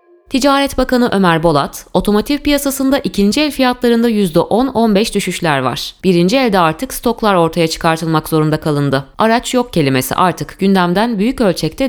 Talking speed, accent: 135 wpm, native